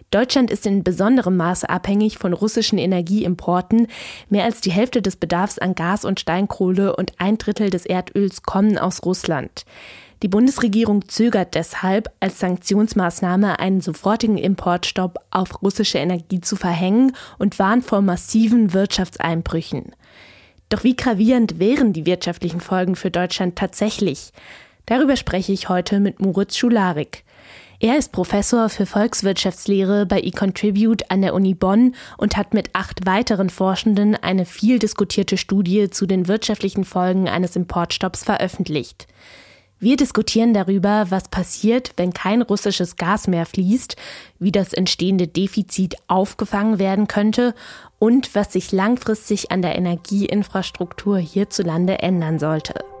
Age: 20-39